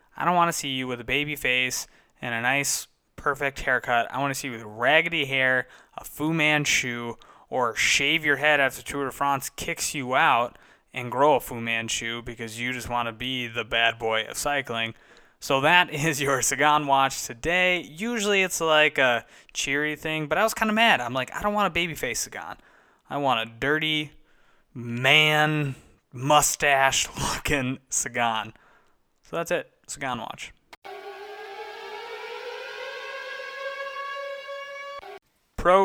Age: 20-39